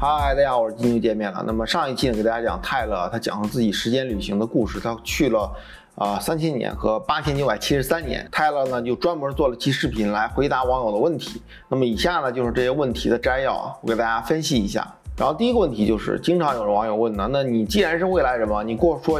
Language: Chinese